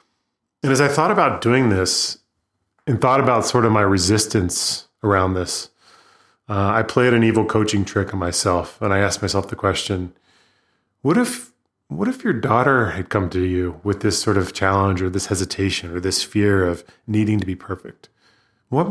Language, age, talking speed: English, 30-49, 185 wpm